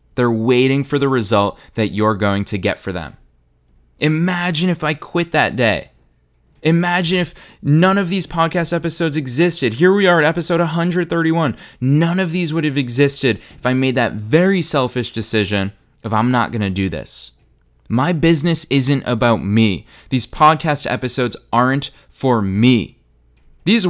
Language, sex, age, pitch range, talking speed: English, male, 20-39, 105-155 Hz, 160 wpm